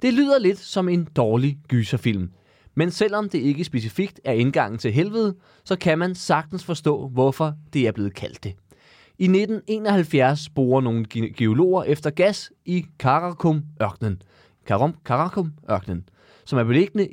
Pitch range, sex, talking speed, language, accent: 130-185 Hz, male, 150 wpm, Danish, native